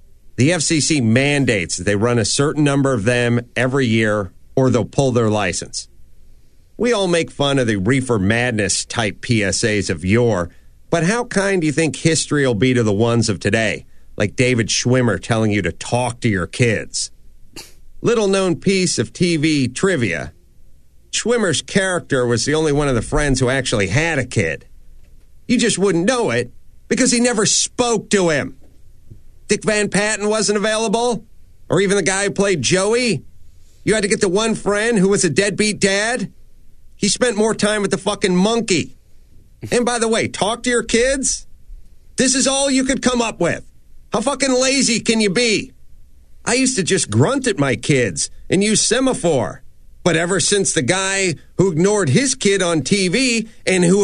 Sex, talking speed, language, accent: male, 180 wpm, English, American